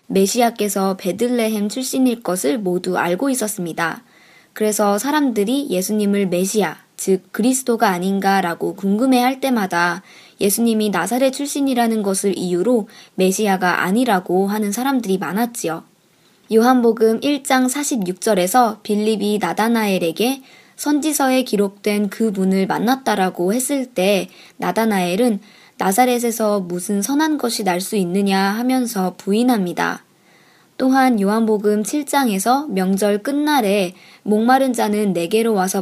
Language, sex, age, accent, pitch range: Korean, male, 20-39, native, 190-240 Hz